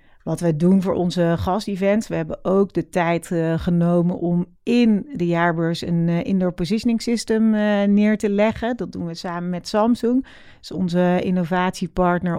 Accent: Dutch